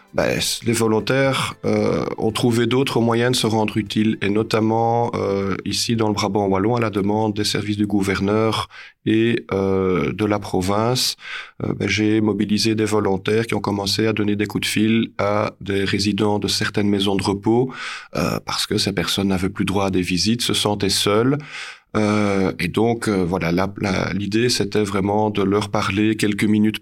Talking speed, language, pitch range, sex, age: 190 wpm, French, 100-120 Hz, male, 40-59